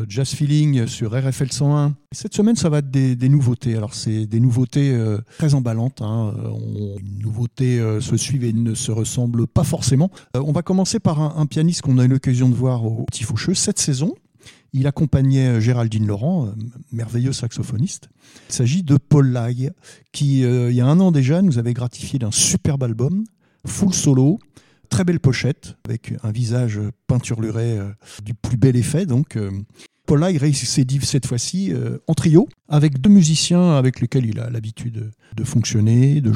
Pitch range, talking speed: 115-150 Hz, 185 wpm